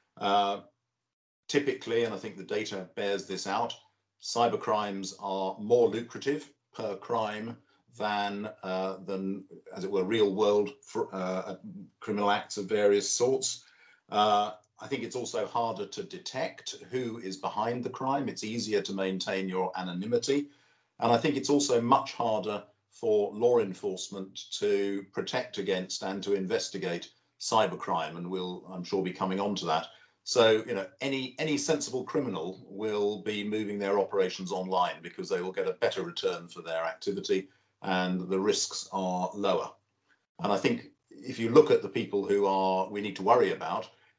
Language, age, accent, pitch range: English, 50-69, British, 95-130 Hz